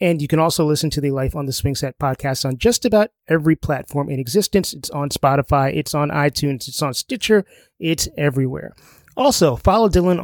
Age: 30-49